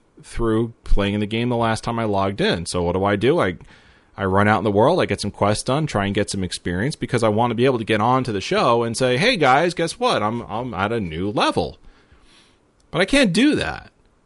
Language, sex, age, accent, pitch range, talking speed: English, male, 30-49, American, 100-125 Hz, 255 wpm